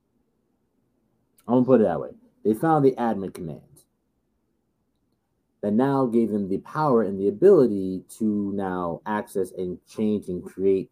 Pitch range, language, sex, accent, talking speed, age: 100-120 Hz, English, male, American, 150 wpm, 30-49